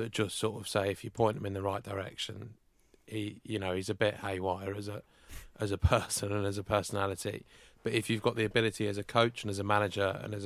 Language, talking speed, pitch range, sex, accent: English, 250 wpm, 100-110 Hz, male, British